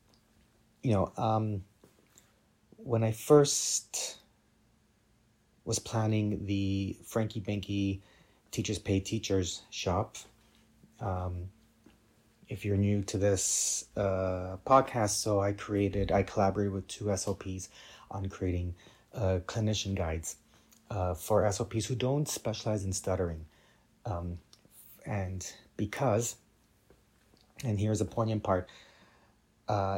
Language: English